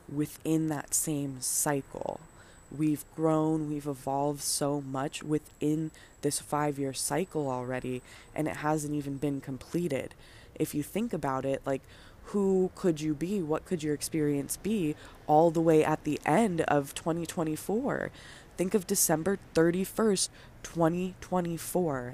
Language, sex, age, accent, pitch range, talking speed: English, female, 20-39, American, 145-180 Hz, 135 wpm